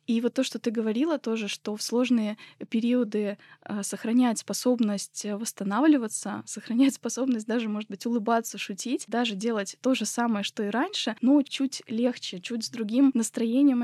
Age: 20-39